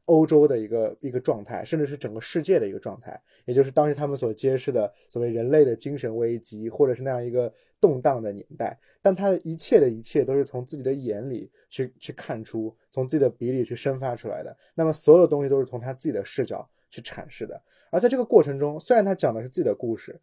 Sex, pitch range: male, 115-160 Hz